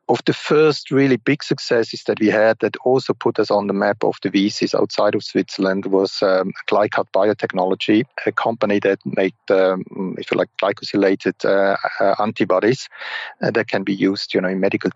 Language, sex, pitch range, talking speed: English, male, 100-120 Hz, 190 wpm